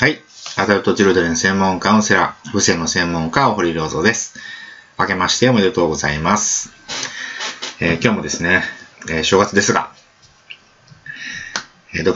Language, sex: Japanese, male